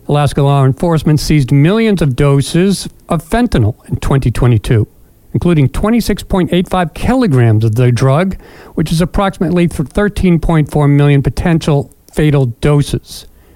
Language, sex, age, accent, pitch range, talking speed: English, male, 50-69, American, 145-205 Hz, 110 wpm